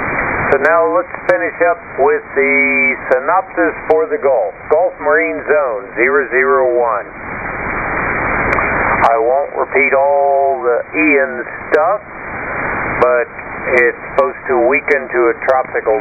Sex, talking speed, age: male, 110 wpm, 50-69